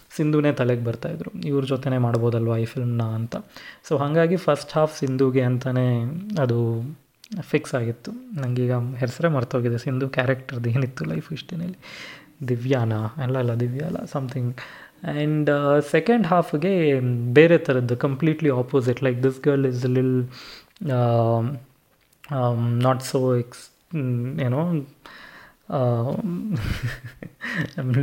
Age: 20-39